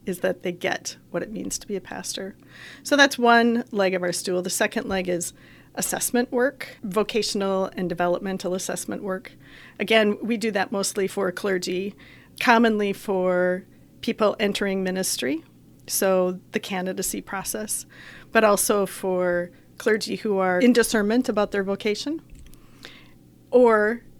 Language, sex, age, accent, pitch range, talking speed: English, female, 40-59, American, 180-215 Hz, 140 wpm